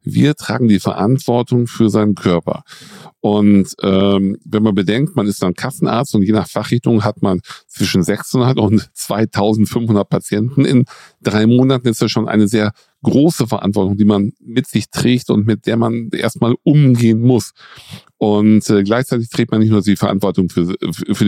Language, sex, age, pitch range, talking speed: German, male, 50-69, 100-125 Hz, 170 wpm